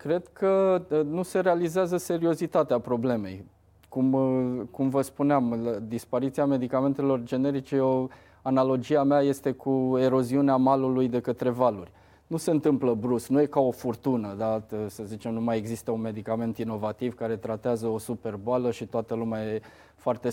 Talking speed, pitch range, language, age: 155 wpm, 120-155 Hz, Romanian, 20-39